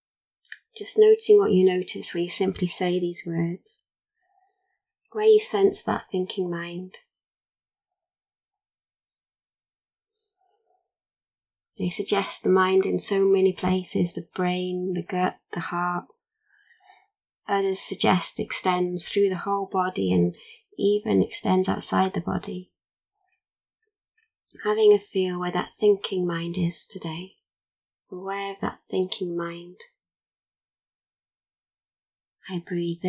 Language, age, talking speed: English, 20-39, 110 wpm